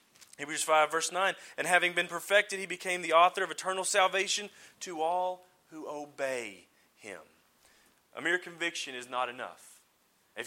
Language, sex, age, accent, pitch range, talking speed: English, male, 30-49, American, 155-200 Hz, 155 wpm